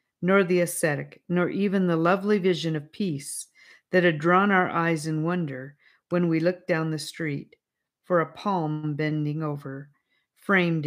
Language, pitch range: English, 150-185 Hz